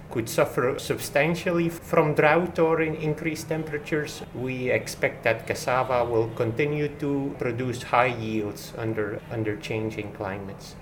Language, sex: English, male